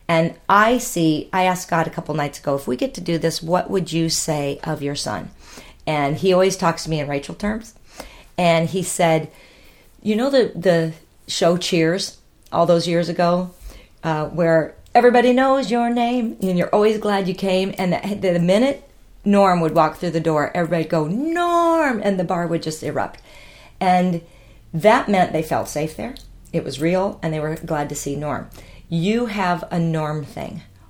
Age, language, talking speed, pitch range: 40-59, English, 195 wpm, 160-205 Hz